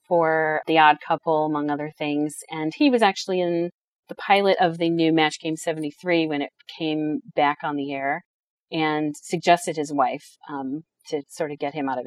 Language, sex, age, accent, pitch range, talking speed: English, female, 40-59, American, 155-185 Hz, 195 wpm